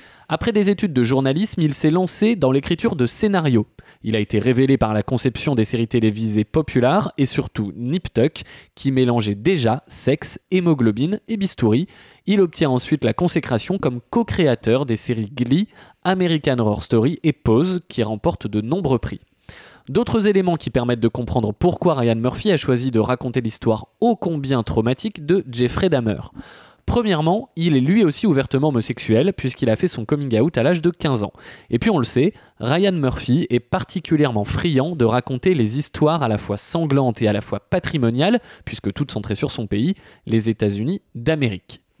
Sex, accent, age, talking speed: male, French, 20-39, 175 wpm